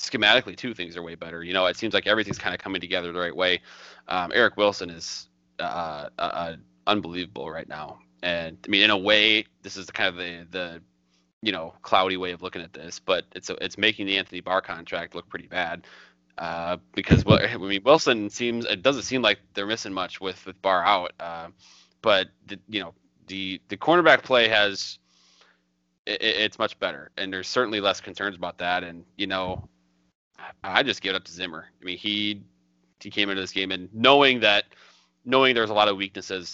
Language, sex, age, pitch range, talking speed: English, male, 30-49, 85-100 Hz, 205 wpm